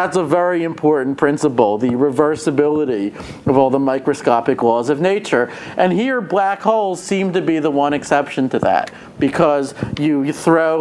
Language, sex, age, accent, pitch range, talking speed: English, male, 50-69, American, 130-170 Hz, 160 wpm